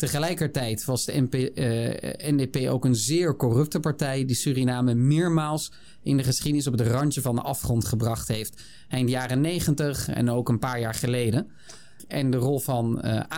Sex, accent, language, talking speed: male, Dutch, Dutch, 175 wpm